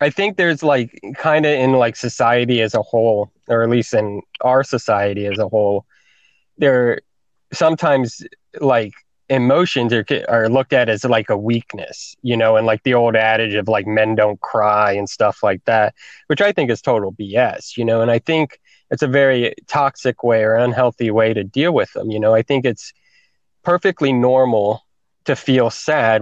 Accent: American